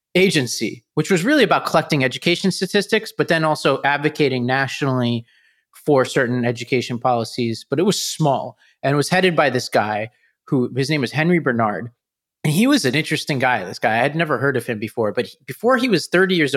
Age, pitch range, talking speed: 30-49, 120-150 Hz, 195 wpm